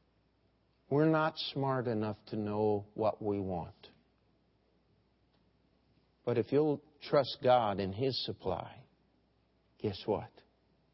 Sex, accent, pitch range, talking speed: male, American, 125-175 Hz, 105 wpm